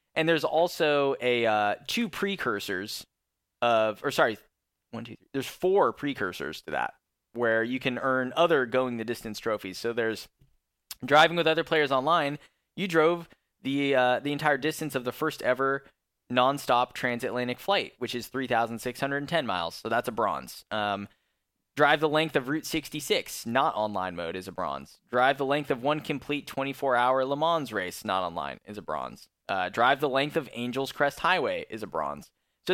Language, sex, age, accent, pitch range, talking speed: English, male, 10-29, American, 115-150 Hz, 175 wpm